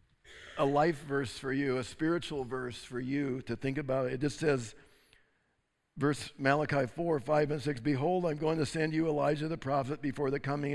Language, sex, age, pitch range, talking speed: English, male, 50-69, 145-195 Hz, 190 wpm